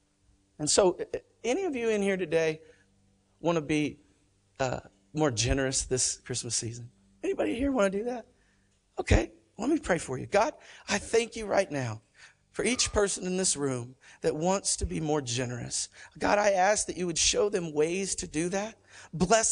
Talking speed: 185 wpm